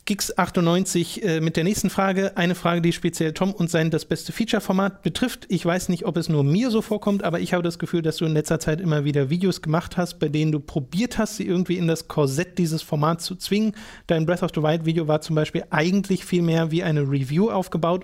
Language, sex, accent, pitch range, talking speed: German, male, German, 160-185 Hz, 230 wpm